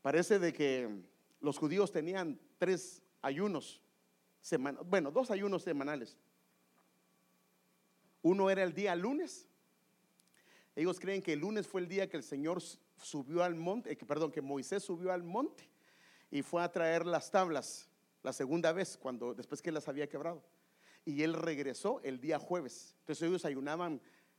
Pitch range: 155-205 Hz